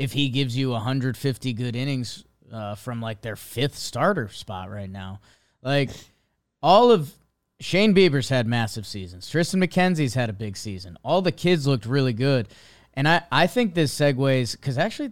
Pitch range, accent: 120-165 Hz, American